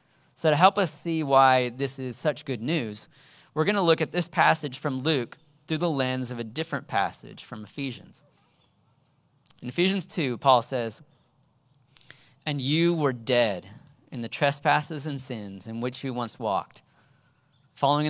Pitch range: 120-150 Hz